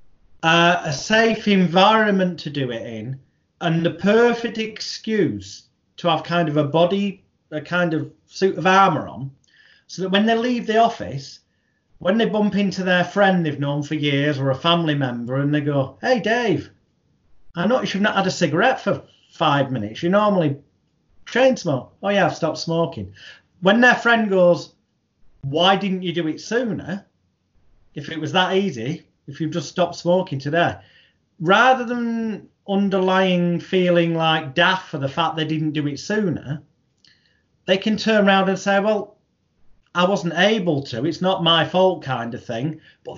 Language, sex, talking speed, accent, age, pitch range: English, male, 170 wpm, British, 30-49, 150-195 Hz